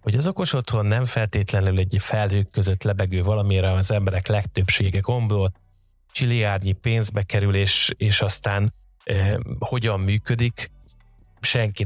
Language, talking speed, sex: Hungarian, 125 wpm, male